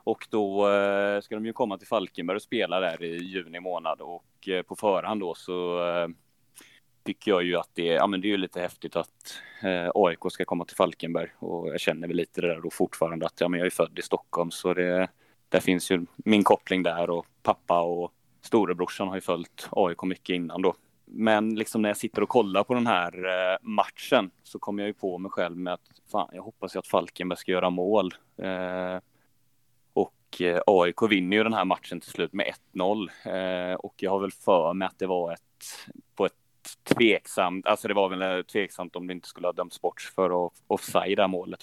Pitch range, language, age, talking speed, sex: 90-100 Hz, Swedish, 30-49, 215 wpm, male